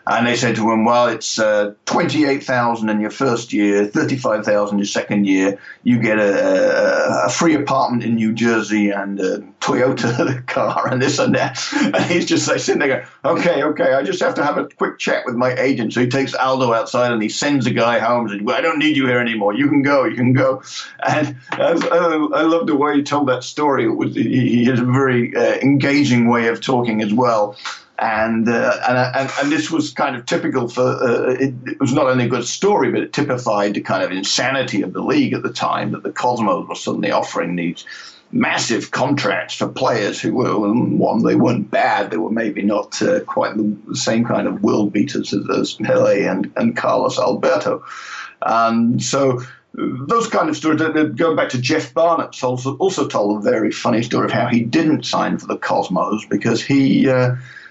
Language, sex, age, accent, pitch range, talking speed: English, male, 50-69, British, 115-140 Hz, 210 wpm